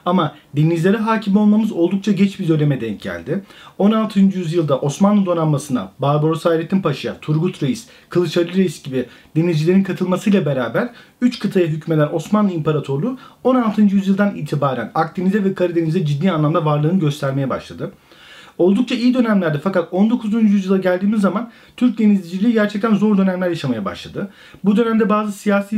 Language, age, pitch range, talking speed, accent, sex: Turkish, 40-59, 165-200 Hz, 140 wpm, native, male